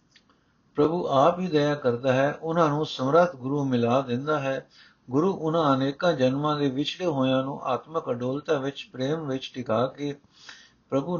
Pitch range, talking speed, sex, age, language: 135-175 Hz, 155 wpm, male, 60-79, Punjabi